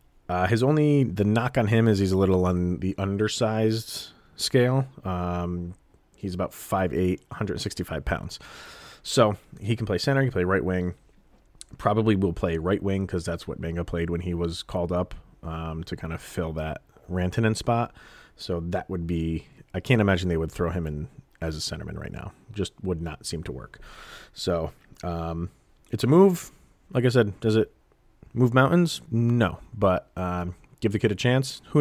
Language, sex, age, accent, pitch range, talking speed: English, male, 30-49, American, 85-110 Hz, 185 wpm